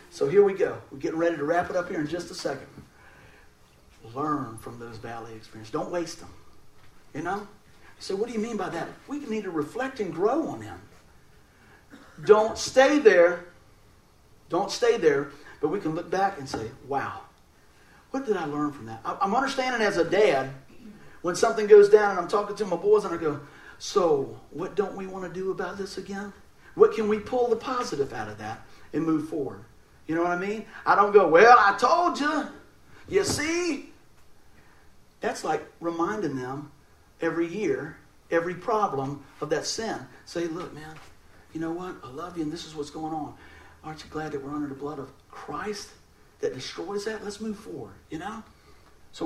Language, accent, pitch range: English, American, 150-225 Hz